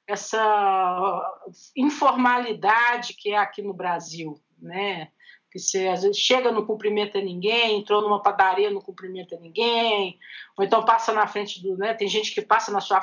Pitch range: 200-245 Hz